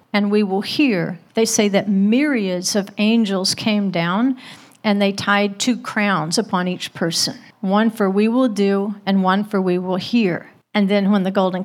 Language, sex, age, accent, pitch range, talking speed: English, female, 50-69, American, 190-230 Hz, 185 wpm